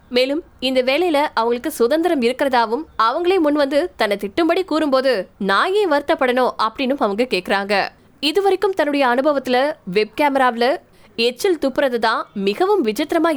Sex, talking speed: female, 45 wpm